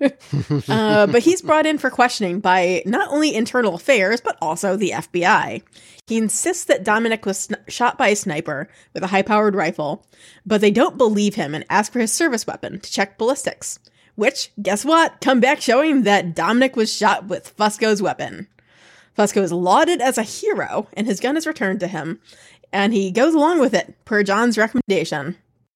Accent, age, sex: American, 20-39, female